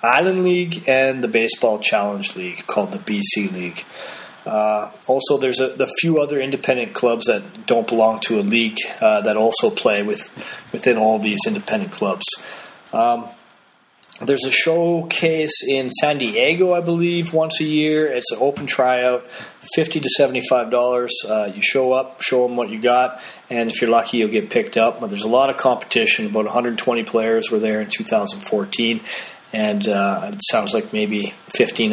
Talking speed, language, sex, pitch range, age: 175 wpm, English, male, 115-150 Hz, 30-49